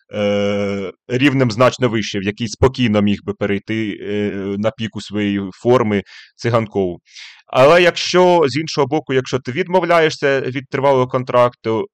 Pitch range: 110-145 Hz